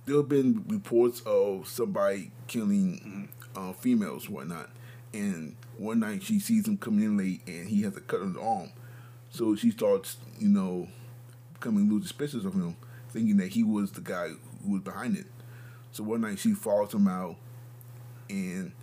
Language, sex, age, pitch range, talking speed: English, male, 30-49, 120-195 Hz, 180 wpm